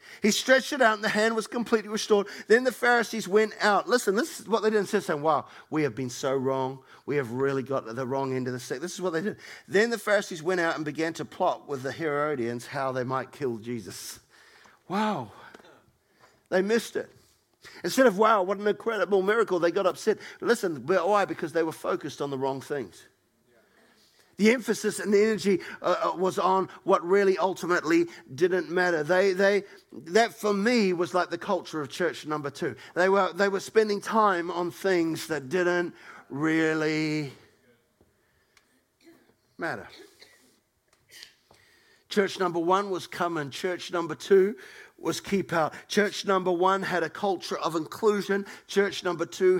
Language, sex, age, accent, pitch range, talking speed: English, male, 50-69, Australian, 155-205 Hz, 175 wpm